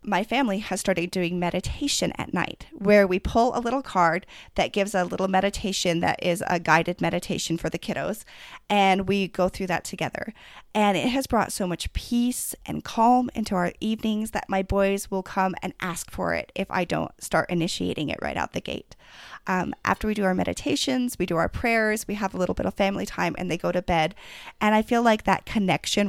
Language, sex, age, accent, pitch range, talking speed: English, female, 30-49, American, 180-220 Hz, 215 wpm